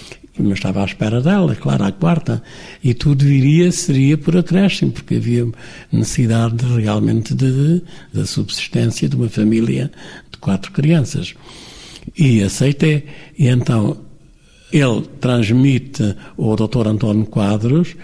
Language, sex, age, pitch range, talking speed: Portuguese, male, 60-79, 115-155 Hz, 130 wpm